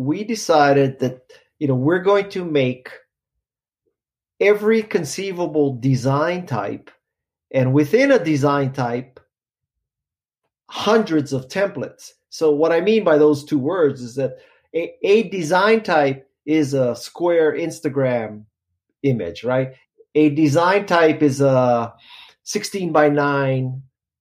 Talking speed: 120 wpm